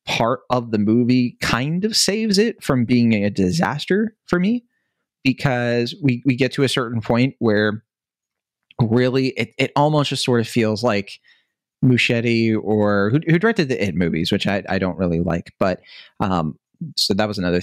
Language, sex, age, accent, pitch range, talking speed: English, male, 30-49, American, 100-130 Hz, 175 wpm